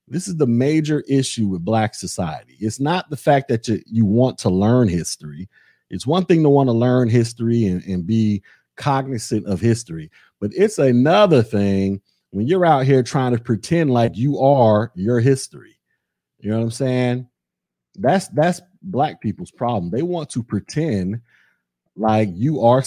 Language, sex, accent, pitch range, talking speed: English, male, American, 105-140 Hz, 175 wpm